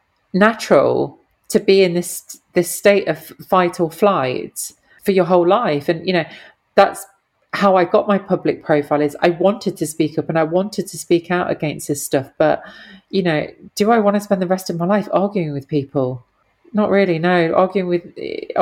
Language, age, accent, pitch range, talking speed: English, 40-59, British, 165-205 Hz, 200 wpm